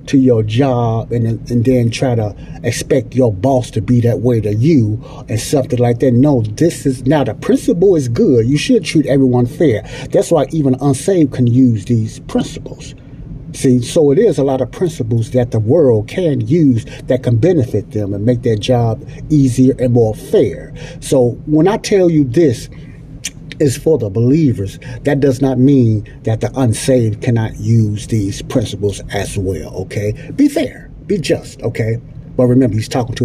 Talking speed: 185 wpm